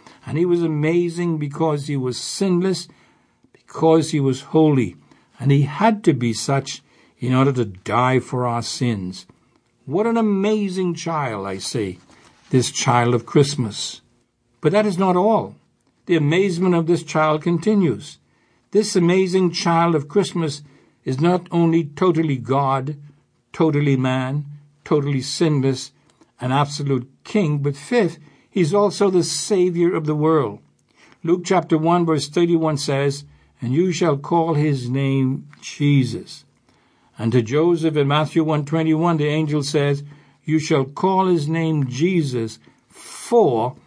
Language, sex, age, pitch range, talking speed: English, male, 60-79, 135-170 Hz, 140 wpm